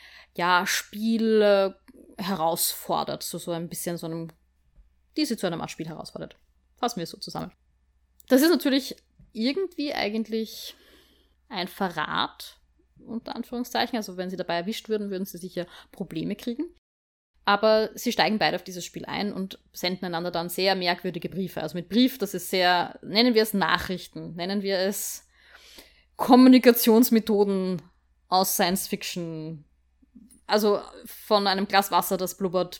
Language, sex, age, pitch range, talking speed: German, female, 20-39, 180-225 Hz, 140 wpm